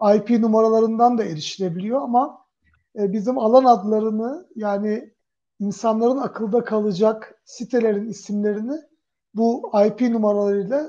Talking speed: 95 wpm